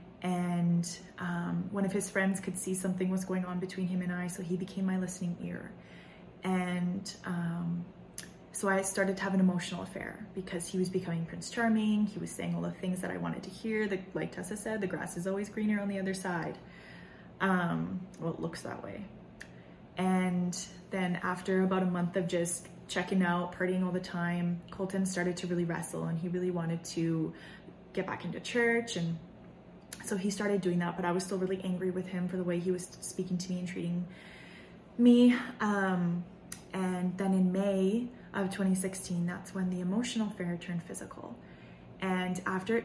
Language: English